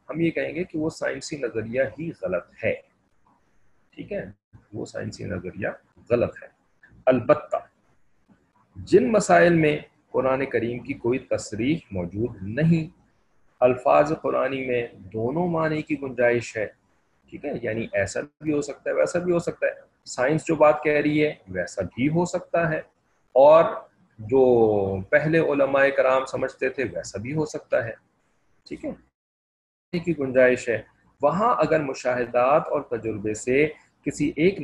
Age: 40-59